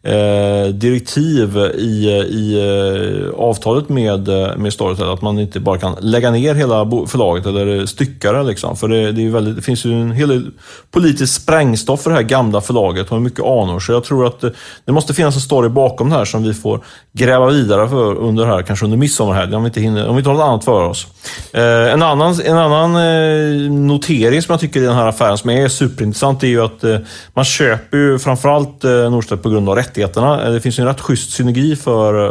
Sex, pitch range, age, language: male, 105-135 Hz, 30-49, Swedish